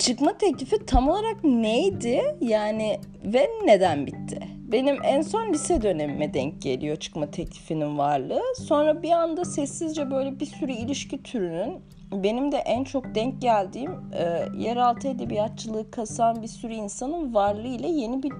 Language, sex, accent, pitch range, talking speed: Turkish, female, native, 190-255 Hz, 145 wpm